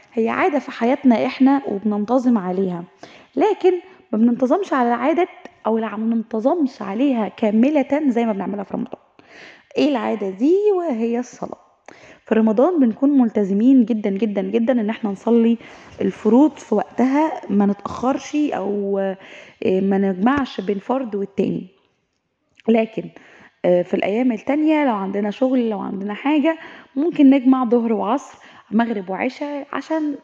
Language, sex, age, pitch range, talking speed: Arabic, female, 20-39, 215-270 Hz, 130 wpm